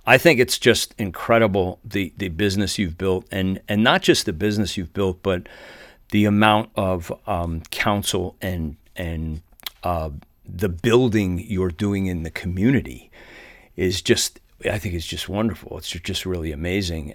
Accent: American